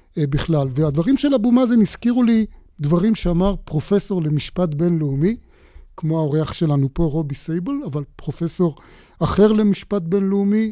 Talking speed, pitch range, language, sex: 130 wpm, 155-200 Hz, Hebrew, male